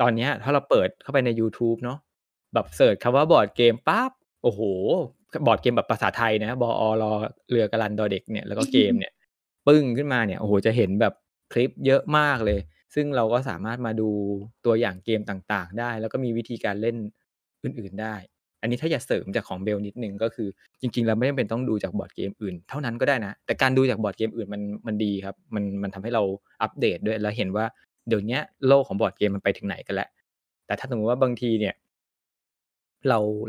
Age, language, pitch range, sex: 20-39, Thai, 105-130 Hz, male